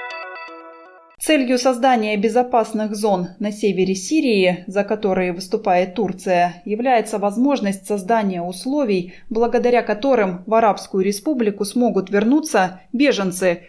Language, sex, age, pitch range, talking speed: Russian, female, 20-39, 185-245 Hz, 100 wpm